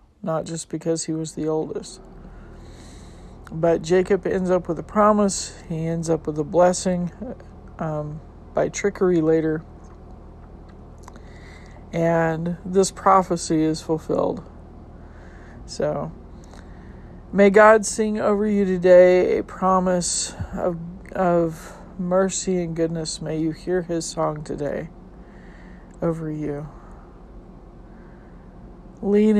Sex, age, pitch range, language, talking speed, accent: male, 50-69, 160-185 Hz, English, 105 wpm, American